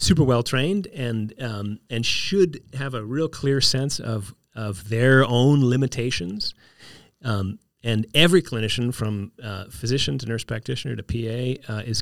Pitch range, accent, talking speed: 110-135 Hz, American, 155 wpm